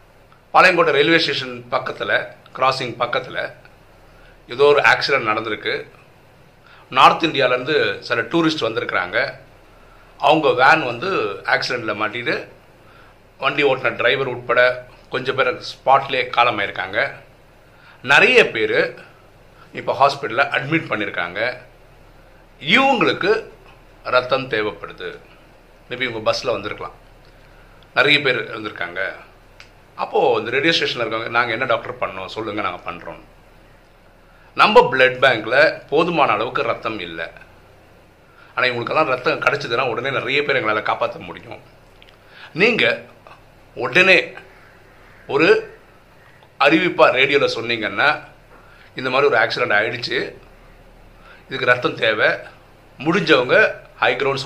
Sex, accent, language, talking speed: male, native, Tamil, 100 wpm